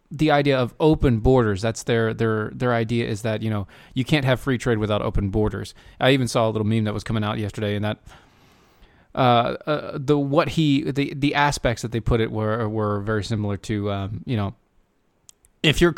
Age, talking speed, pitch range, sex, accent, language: 20-39, 215 wpm, 110-140 Hz, male, American, English